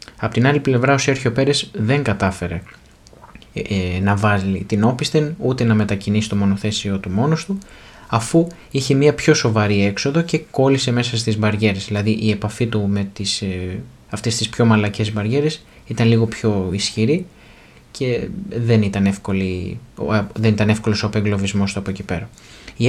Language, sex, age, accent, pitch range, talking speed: Greek, male, 20-39, native, 105-135 Hz, 155 wpm